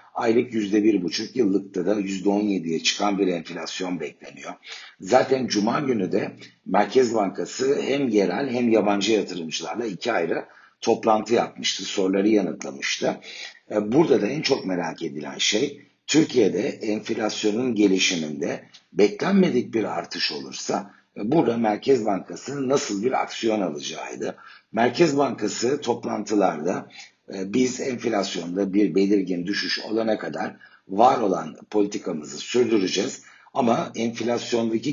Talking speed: 110 wpm